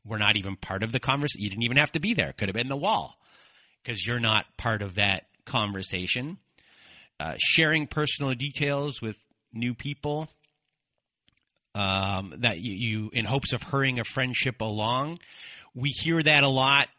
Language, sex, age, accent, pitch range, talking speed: English, male, 30-49, American, 110-135 Hz, 175 wpm